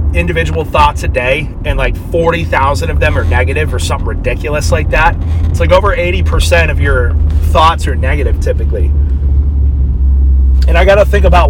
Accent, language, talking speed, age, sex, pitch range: American, English, 160 wpm, 30-49, male, 85-110 Hz